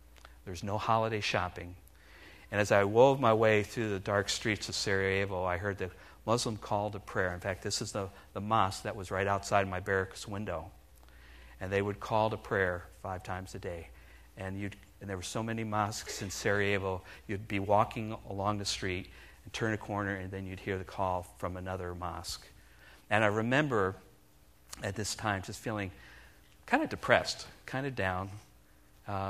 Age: 50-69